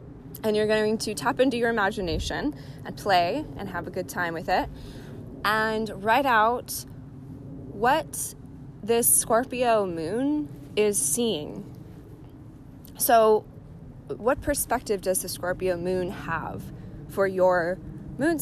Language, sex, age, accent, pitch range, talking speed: English, female, 20-39, American, 165-235 Hz, 120 wpm